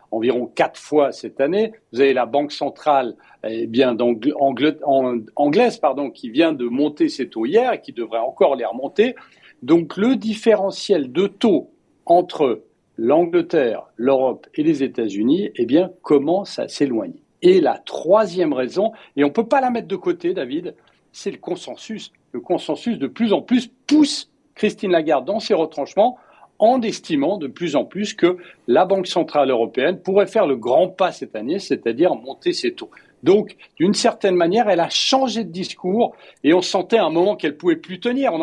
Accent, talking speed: French, 180 wpm